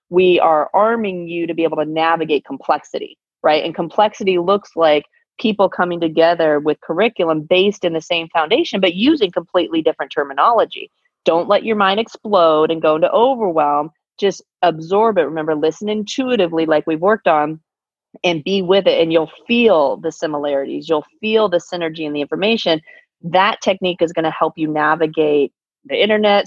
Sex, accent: female, American